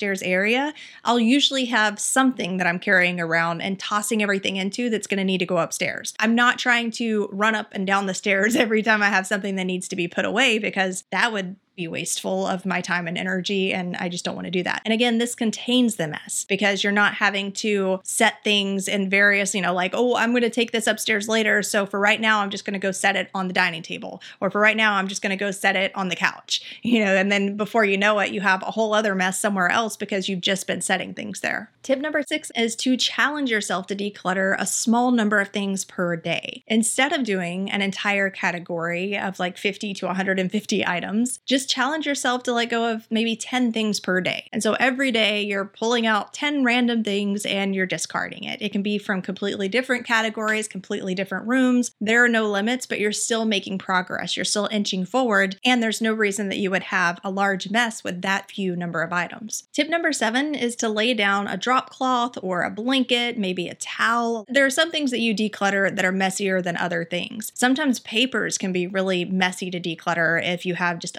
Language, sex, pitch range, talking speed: English, female, 190-230 Hz, 230 wpm